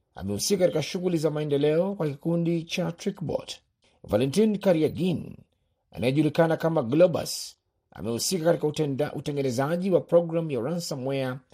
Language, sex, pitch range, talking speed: Swahili, male, 135-175 Hz, 105 wpm